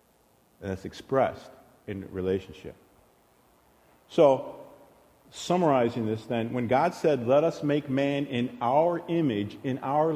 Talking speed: 120 wpm